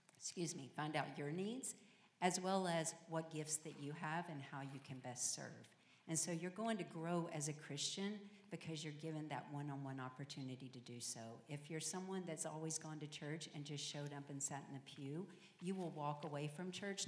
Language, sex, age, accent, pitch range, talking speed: English, female, 50-69, American, 140-170 Hz, 220 wpm